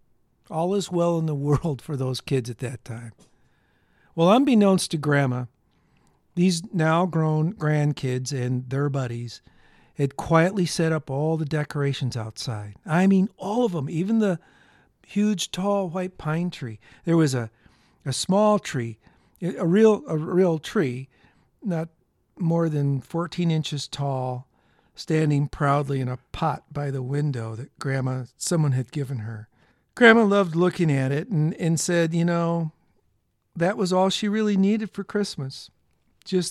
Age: 50-69